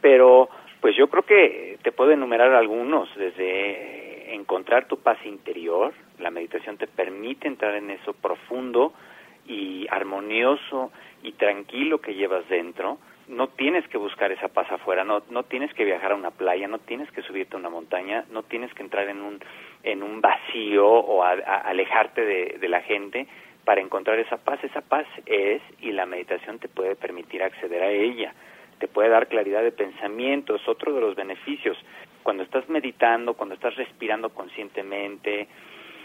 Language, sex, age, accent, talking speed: Spanish, male, 40-59, Mexican, 165 wpm